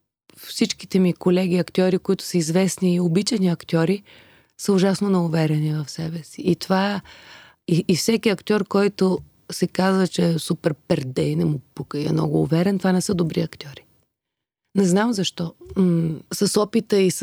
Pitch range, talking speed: 165-195 Hz, 155 wpm